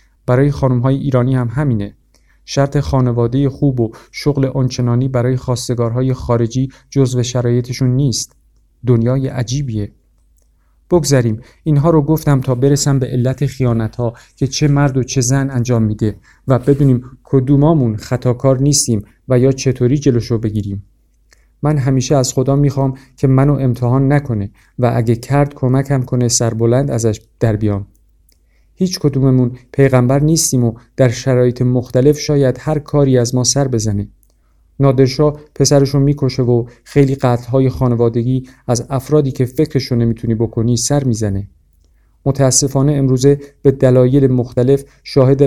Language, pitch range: Persian, 120-135 Hz